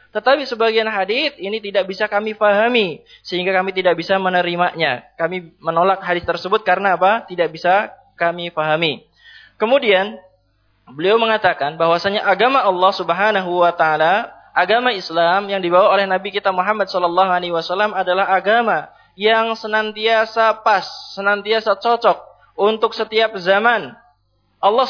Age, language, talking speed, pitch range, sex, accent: 20-39, Indonesian, 125 wpm, 190-235 Hz, male, native